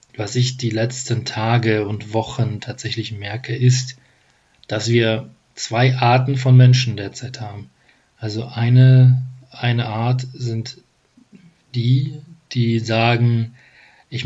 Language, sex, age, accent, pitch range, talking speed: German, male, 40-59, German, 110-130 Hz, 115 wpm